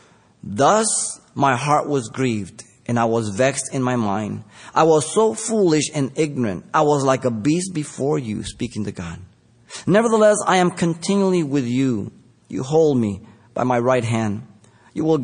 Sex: male